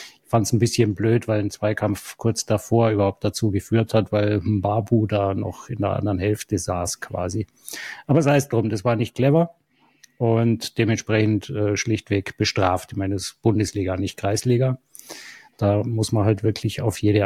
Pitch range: 105-120 Hz